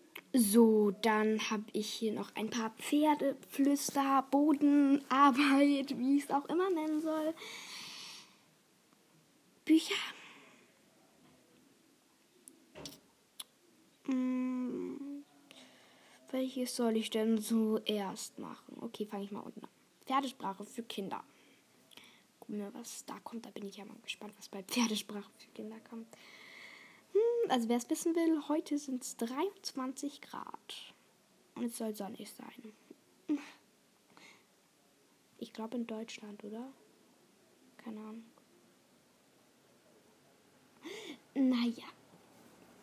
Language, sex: German, female